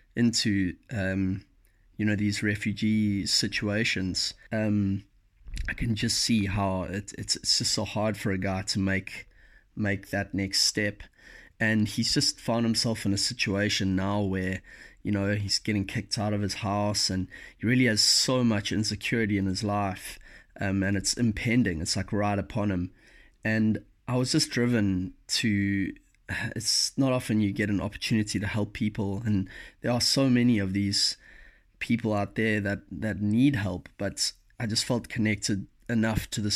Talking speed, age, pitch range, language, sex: 170 wpm, 20-39, 100-110 Hz, English, male